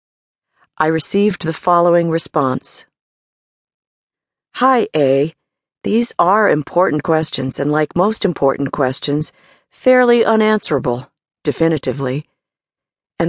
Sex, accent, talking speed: female, American, 90 wpm